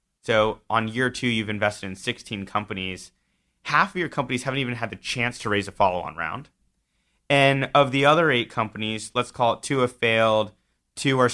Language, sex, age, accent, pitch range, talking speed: English, male, 30-49, American, 100-125 Hz, 195 wpm